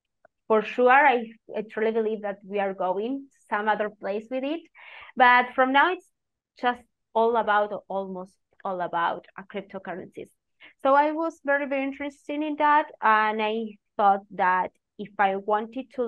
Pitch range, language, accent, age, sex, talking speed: 190-240 Hz, English, Spanish, 20-39, female, 155 wpm